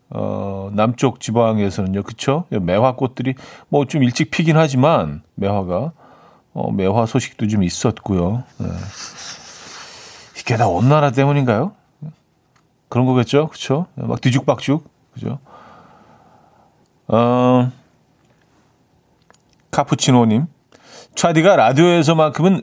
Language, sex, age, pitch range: Korean, male, 40-59, 105-135 Hz